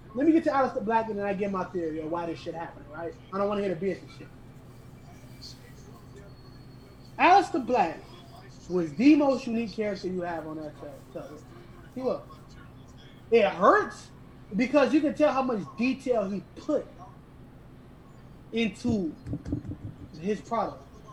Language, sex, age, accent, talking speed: English, male, 20-39, American, 155 wpm